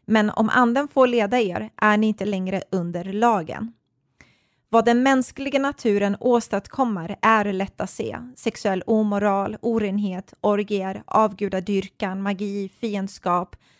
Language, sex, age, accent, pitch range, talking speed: Swedish, female, 20-39, native, 195-230 Hz, 120 wpm